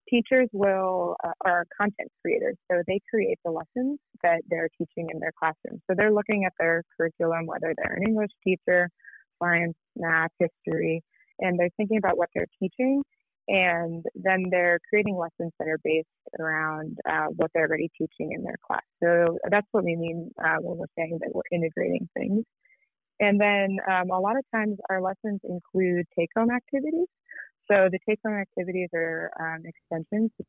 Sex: female